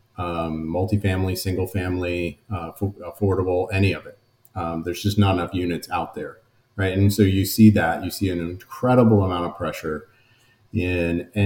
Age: 40-59